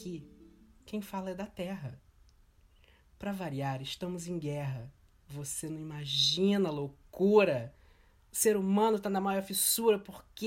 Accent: Brazilian